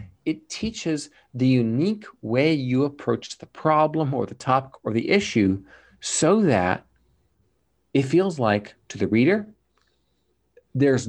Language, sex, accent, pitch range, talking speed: English, male, American, 110-145 Hz, 130 wpm